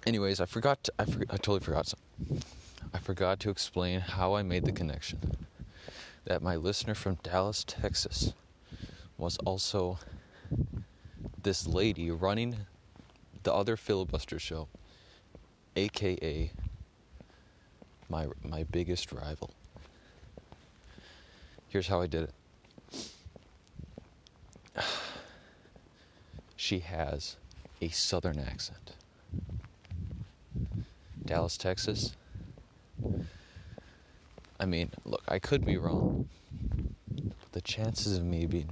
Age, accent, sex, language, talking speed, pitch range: 30-49, American, male, English, 100 wpm, 80-100 Hz